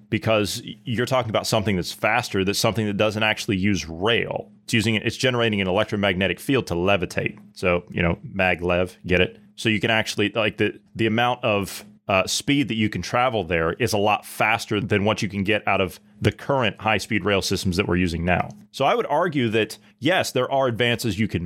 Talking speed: 215 wpm